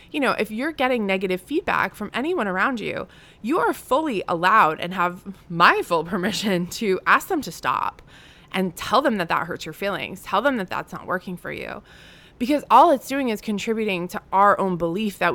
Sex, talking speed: female, 205 wpm